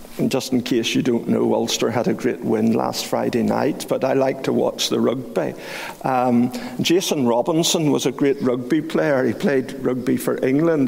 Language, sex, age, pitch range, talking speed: English, male, 50-69, 135-185 Hz, 195 wpm